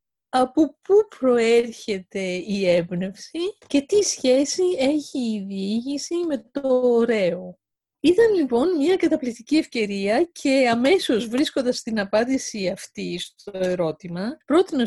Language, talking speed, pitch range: French, 115 wpm, 195-290 Hz